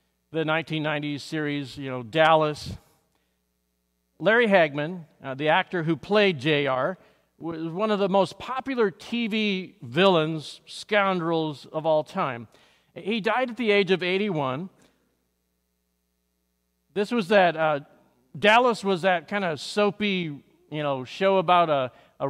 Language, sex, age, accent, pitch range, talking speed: English, male, 50-69, American, 135-185 Hz, 130 wpm